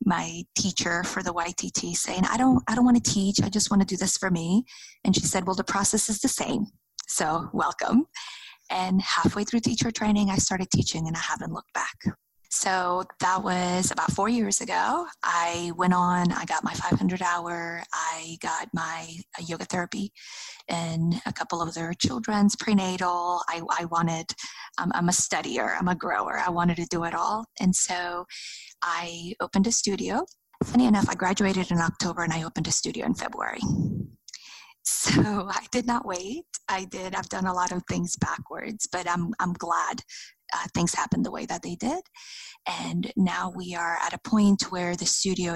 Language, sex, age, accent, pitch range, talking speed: English, female, 20-39, American, 170-210 Hz, 185 wpm